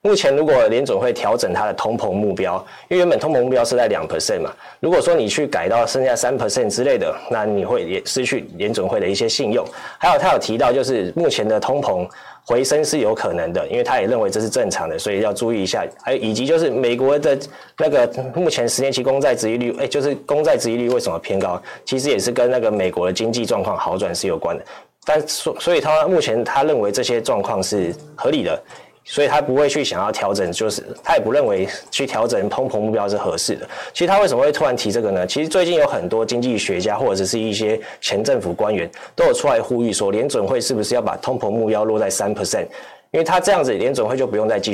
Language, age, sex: Chinese, 20-39, male